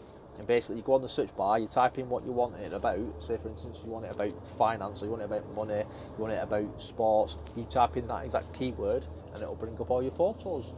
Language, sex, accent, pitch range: English, male, British, 110-140 Hz